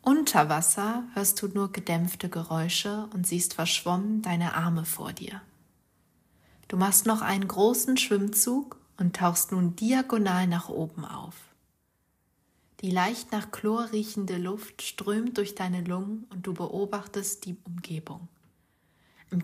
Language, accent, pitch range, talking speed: German, German, 175-210 Hz, 135 wpm